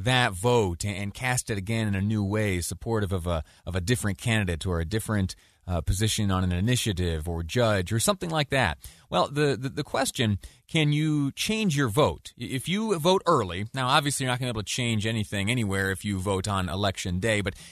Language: English